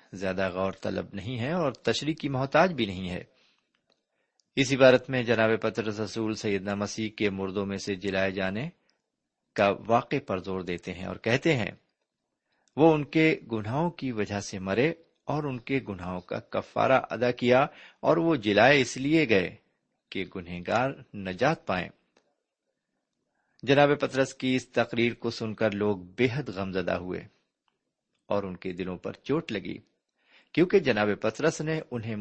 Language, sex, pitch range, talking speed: Urdu, male, 100-135 Hz, 160 wpm